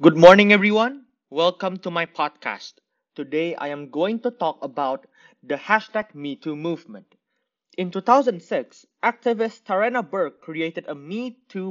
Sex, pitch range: male, 150-235 Hz